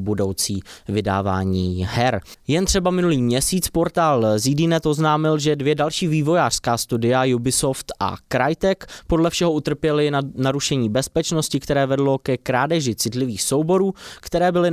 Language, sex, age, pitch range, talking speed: Czech, male, 20-39, 120-155 Hz, 130 wpm